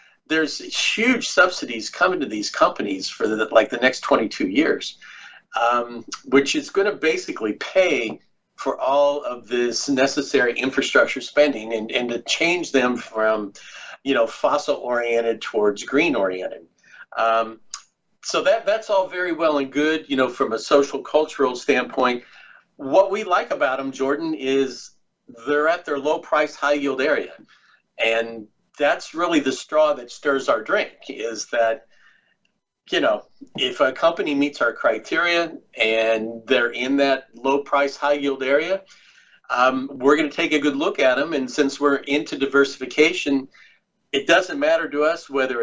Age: 50-69